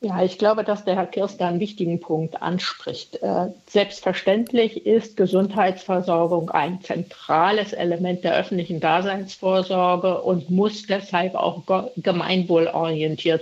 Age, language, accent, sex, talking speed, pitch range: 60-79, German, German, female, 110 wpm, 175-205 Hz